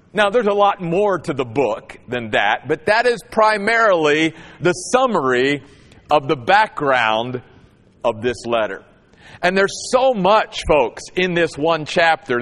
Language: English